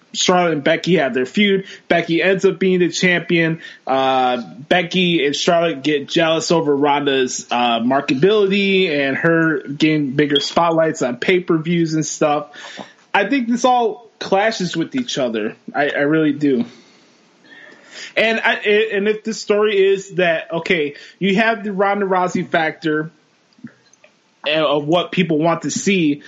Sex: male